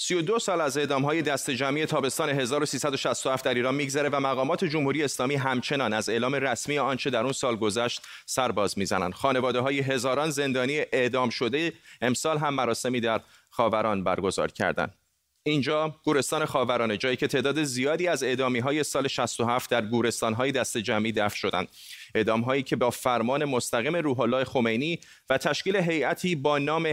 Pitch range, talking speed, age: 120-150 Hz, 165 wpm, 30-49